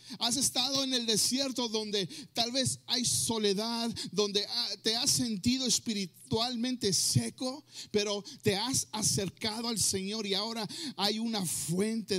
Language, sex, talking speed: Spanish, male, 135 wpm